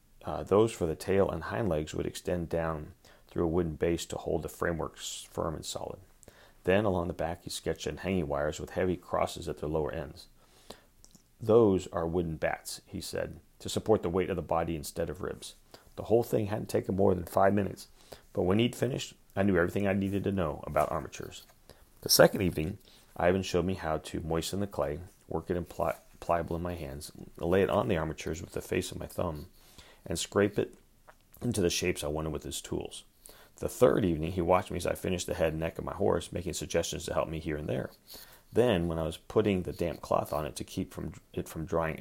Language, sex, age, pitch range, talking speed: English, male, 30-49, 80-95 Hz, 220 wpm